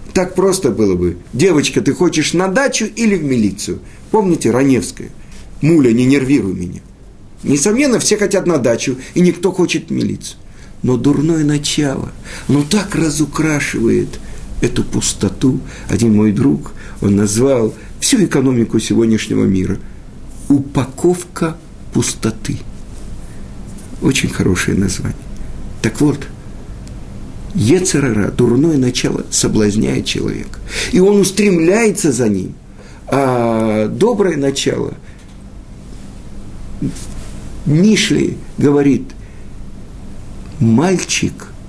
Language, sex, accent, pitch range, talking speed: Russian, male, native, 105-165 Hz, 100 wpm